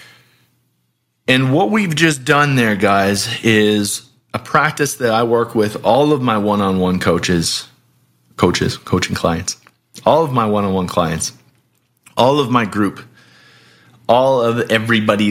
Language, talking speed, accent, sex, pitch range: English, 135 wpm, American, male, 110-165 Hz